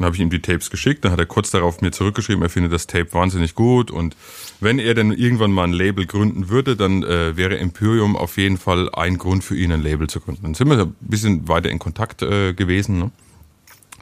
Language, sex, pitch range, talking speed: German, male, 90-120 Hz, 240 wpm